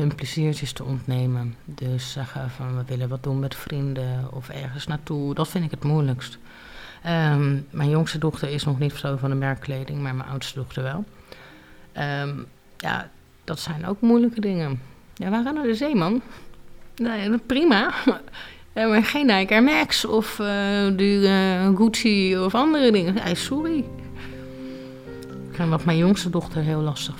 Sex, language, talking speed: female, Dutch, 170 wpm